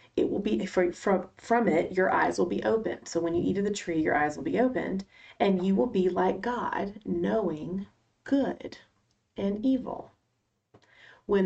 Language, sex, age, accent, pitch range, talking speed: English, female, 30-49, American, 175-245 Hz, 175 wpm